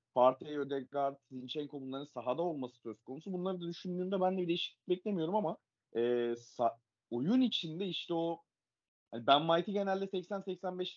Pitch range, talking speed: 125-170 Hz, 155 wpm